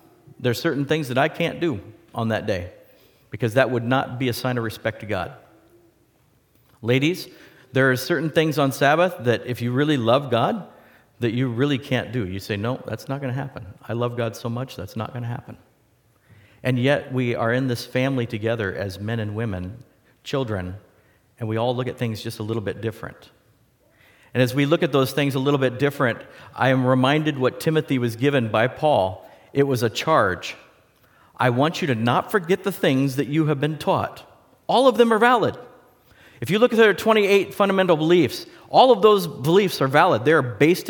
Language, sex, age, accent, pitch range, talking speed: English, male, 50-69, American, 115-150 Hz, 205 wpm